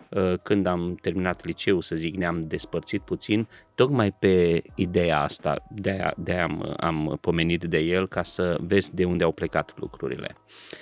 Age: 30-49